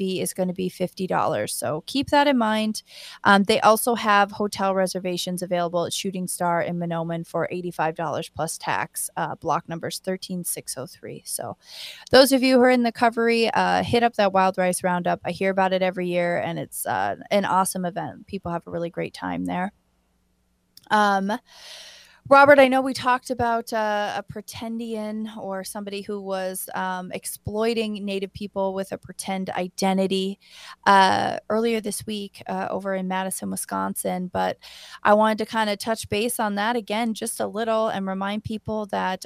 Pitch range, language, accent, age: 185-225 Hz, English, American, 20-39